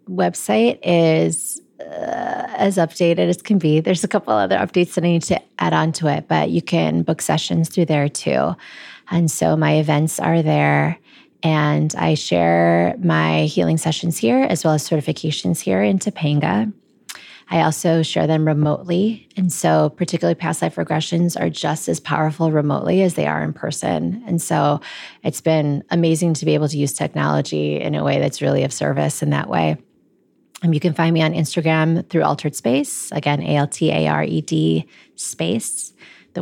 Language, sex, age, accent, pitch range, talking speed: English, female, 20-39, American, 145-180 Hz, 180 wpm